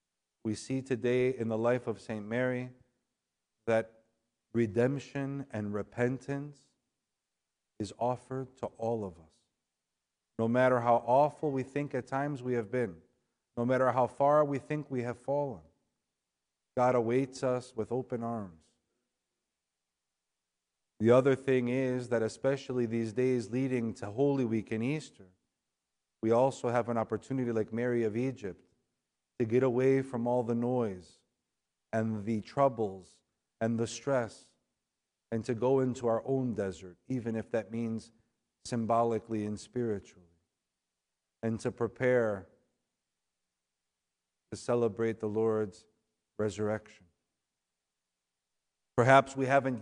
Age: 50-69